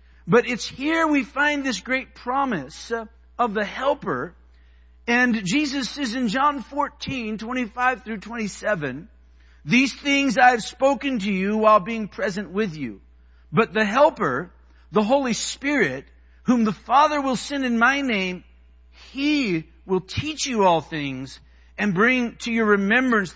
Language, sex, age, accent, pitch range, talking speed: English, male, 50-69, American, 190-260 Hz, 150 wpm